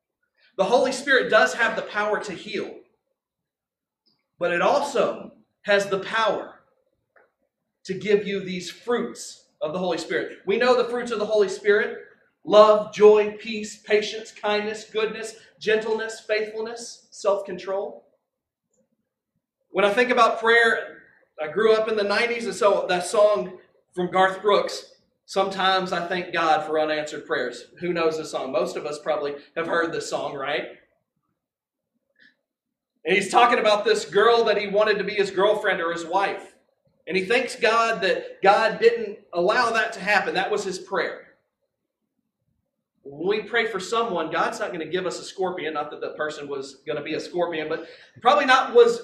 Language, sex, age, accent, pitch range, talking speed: English, male, 40-59, American, 185-230 Hz, 170 wpm